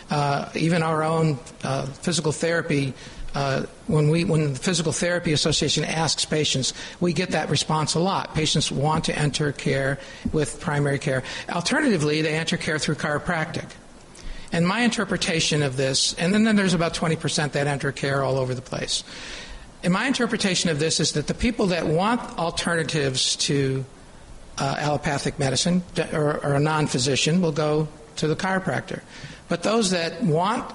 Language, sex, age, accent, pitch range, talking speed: English, male, 50-69, American, 145-170 Hz, 165 wpm